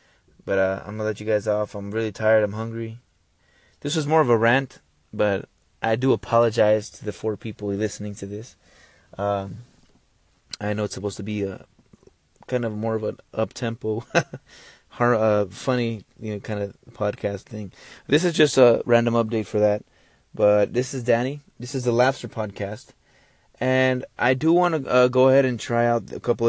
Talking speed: 185 wpm